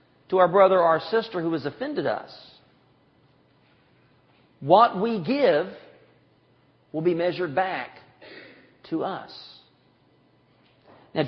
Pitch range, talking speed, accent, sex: 185-240 Hz, 105 wpm, American, male